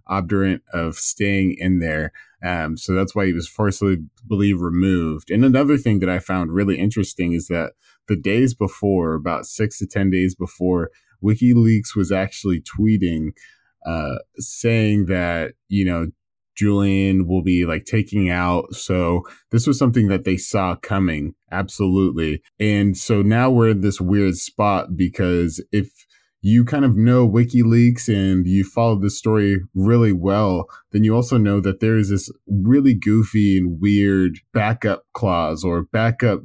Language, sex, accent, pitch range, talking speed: English, male, American, 90-110 Hz, 155 wpm